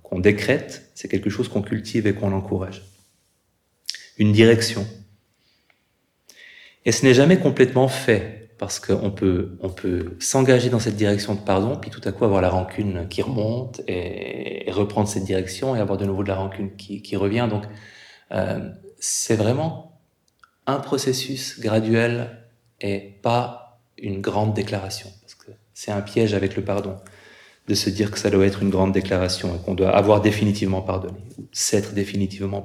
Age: 30-49